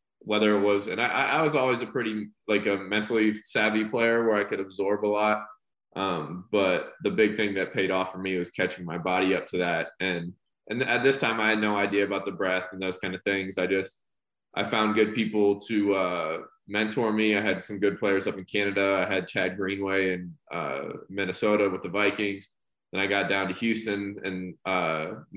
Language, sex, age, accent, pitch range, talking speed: English, male, 20-39, American, 95-105 Hz, 215 wpm